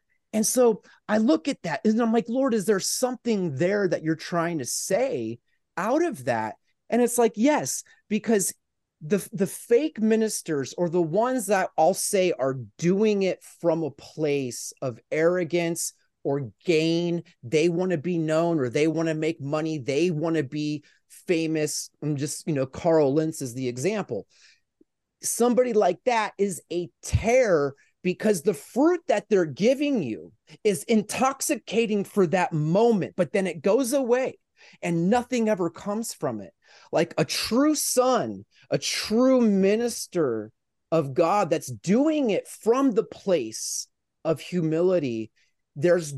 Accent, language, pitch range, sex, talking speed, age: American, English, 160-225 Hz, male, 155 wpm, 30-49